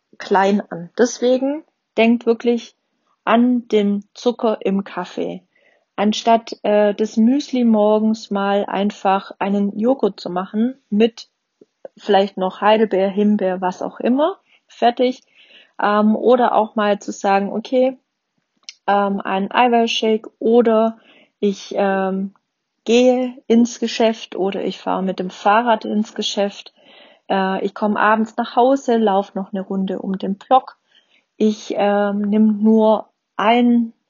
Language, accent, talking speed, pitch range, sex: German, German, 125 wpm, 195-235 Hz, female